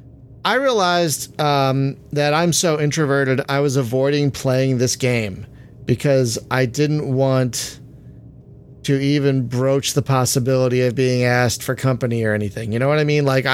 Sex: male